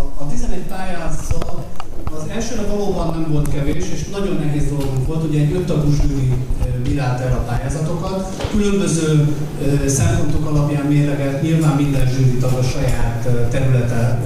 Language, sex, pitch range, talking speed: Hungarian, male, 125-150 Hz, 130 wpm